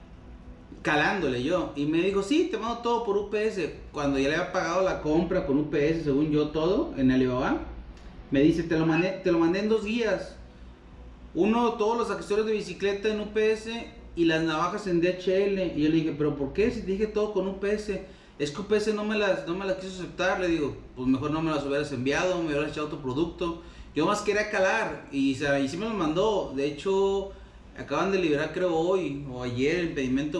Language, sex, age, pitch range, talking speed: Spanish, male, 30-49, 140-195 Hz, 210 wpm